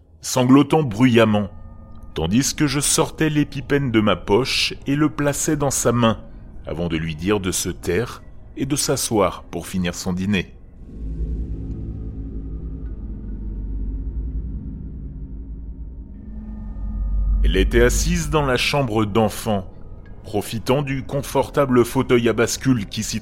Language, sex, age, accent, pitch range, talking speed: French, male, 30-49, French, 90-125 Hz, 115 wpm